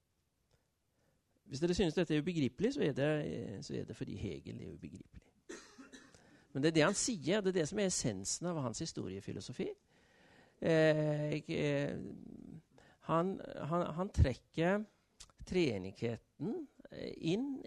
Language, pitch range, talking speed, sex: Danish, 115-175 Hz, 120 wpm, male